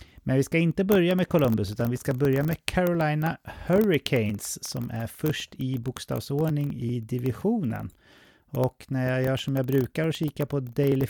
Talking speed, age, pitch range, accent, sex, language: 175 wpm, 30-49, 120-145 Hz, Swedish, male, English